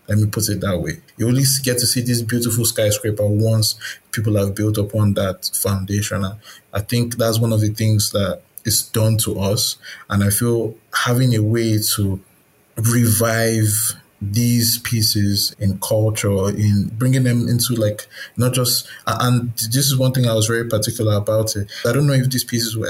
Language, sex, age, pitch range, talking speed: English, male, 20-39, 105-115 Hz, 185 wpm